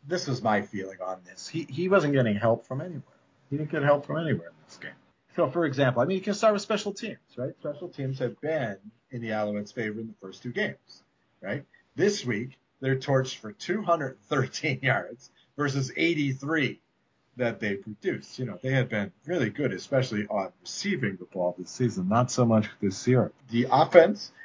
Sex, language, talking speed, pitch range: male, English, 200 wpm, 115-155 Hz